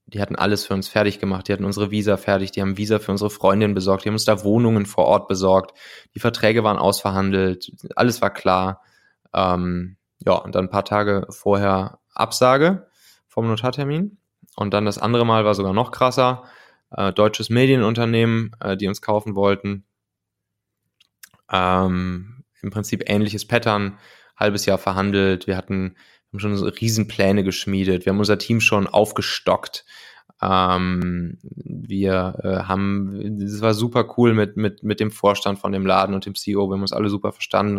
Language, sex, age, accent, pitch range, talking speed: German, male, 20-39, German, 95-105 Hz, 170 wpm